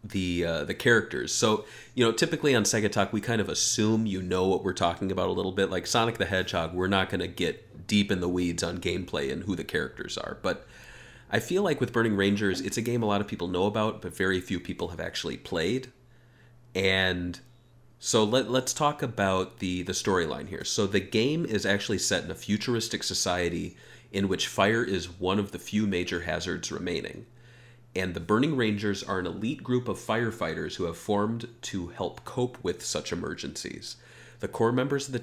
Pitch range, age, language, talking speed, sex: 95-120 Hz, 30-49, English, 205 wpm, male